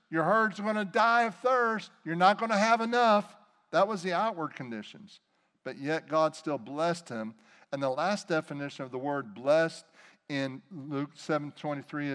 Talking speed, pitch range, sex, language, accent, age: 180 wpm, 155-210 Hz, male, English, American, 50-69